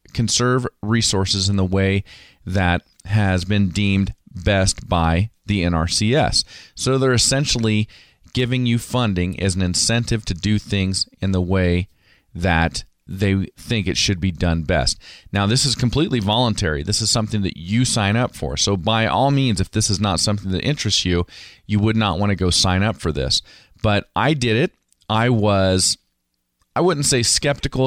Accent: American